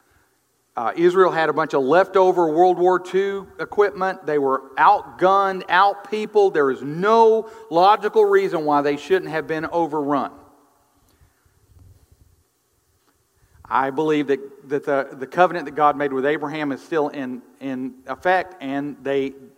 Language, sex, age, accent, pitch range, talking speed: English, male, 50-69, American, 140-185 Hz, 135 wpm